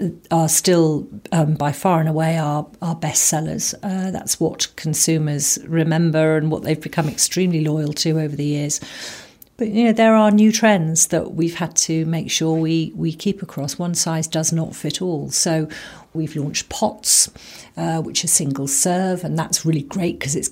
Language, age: English, 50-69